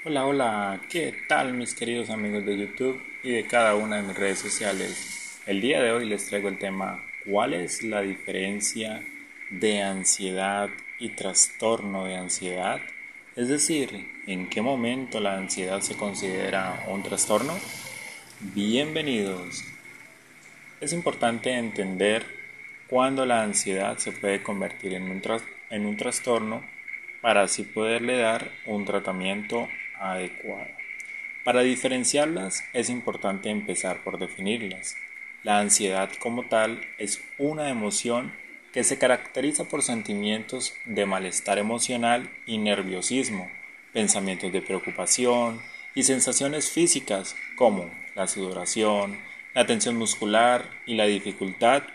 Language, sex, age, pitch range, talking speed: Spanish, male, 30-49, 95-120 Hz, 125 wpm